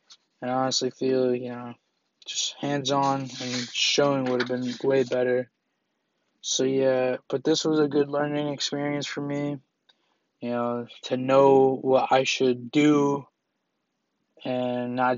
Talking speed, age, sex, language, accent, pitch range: 140 wpm, 20-39, male, English, American, 130-145 Hz